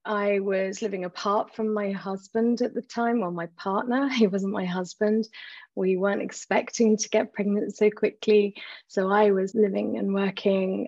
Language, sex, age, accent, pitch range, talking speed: English, female, 30-49, British, 185-215 Hz, 170 wpm